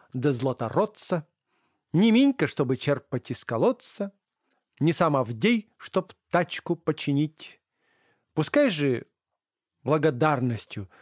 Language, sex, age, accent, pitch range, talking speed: Russian, male, 40-59, native, 125-180 Hz, 85 wpm